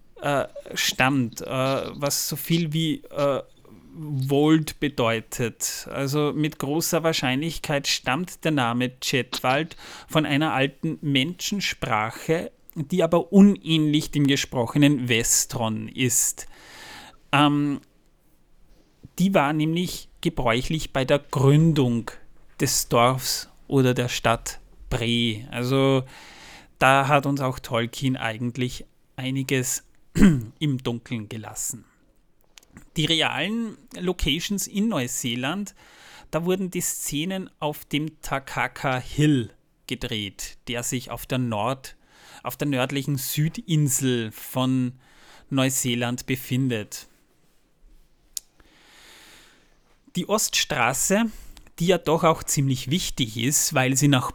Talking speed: 100 wpm